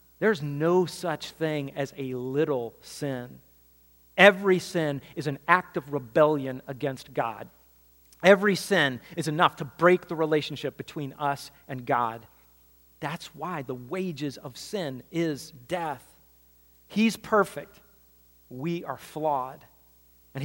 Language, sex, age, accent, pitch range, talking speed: English, male, 40-59, American, 120-170 Hz, 125 wpm